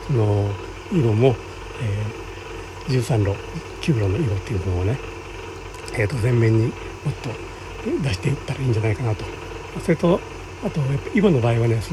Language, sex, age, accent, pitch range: Japanese, male, 60-79, native, 115-160 Hz